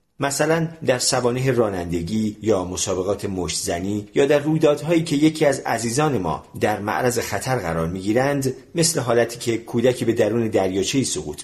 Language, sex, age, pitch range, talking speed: Persian, male, 40-59, 95-135 Hz, 145 wpm